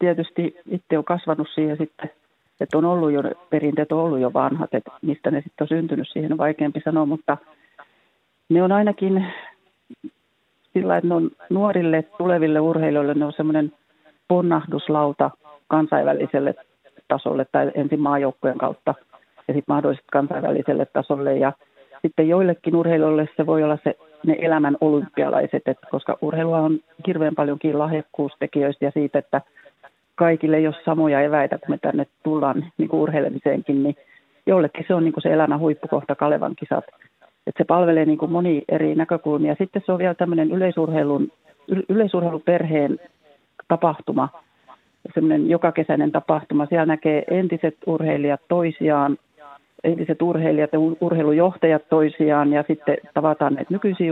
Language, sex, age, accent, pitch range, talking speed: Finnish, female, 40-59, native, 150-170 Hz, 140 wpm